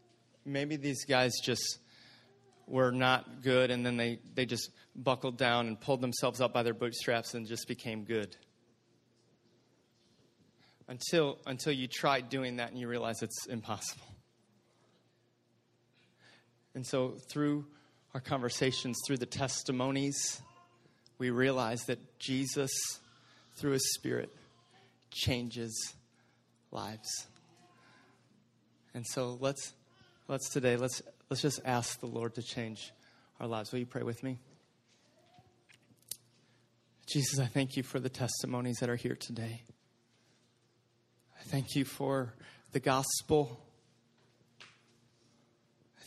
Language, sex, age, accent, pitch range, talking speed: English, male, 30-49, American, 120-135 Hz, 120 wpm